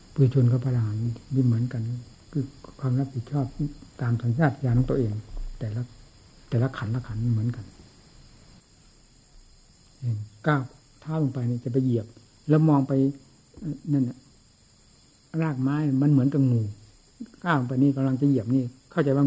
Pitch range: 115-145 Hz